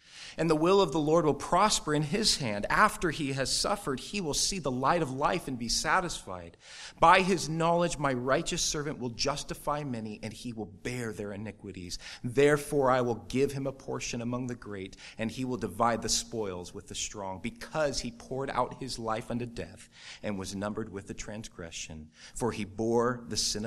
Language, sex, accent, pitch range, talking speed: English, male, American, 110-150 Hz, 200 wpm